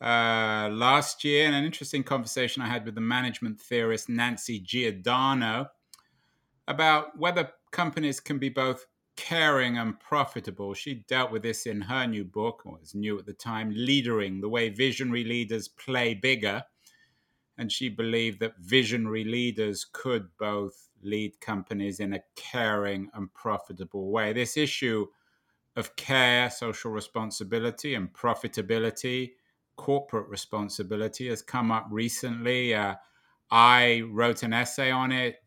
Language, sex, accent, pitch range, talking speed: English, male, British, 105-130 Hz, 140 wpm